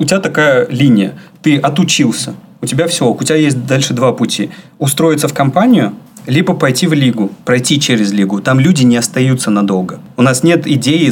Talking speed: 185 wpm